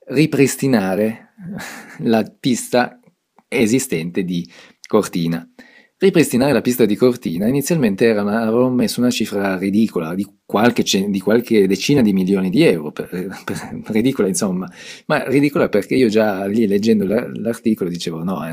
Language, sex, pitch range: Italian, male, 95-125 Hz